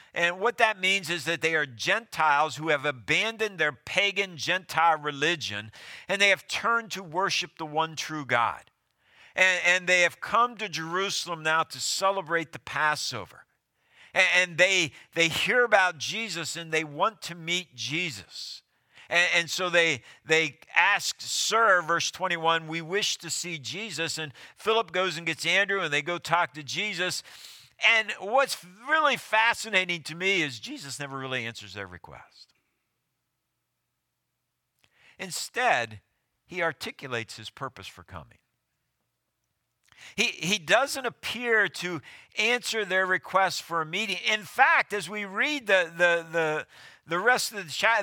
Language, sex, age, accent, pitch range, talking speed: English, male, 50-69, American, 150-200 Hz, 150 wpm